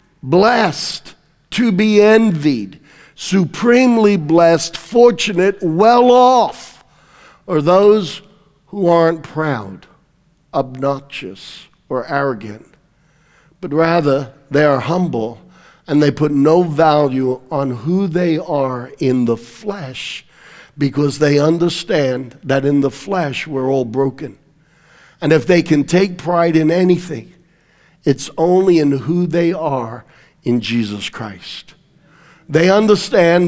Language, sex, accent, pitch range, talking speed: English, male, American, 140-175 Hz, 110 wpm